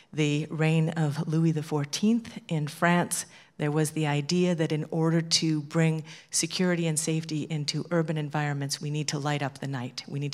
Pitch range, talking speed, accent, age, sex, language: 145-165 Hz, 180 wpm, American, 50-69, female, English